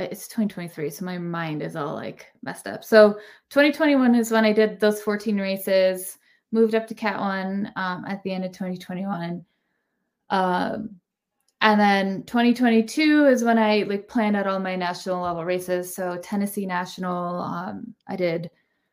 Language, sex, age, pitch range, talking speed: English, female, 20-39, 180-215 Hz, 160 wpm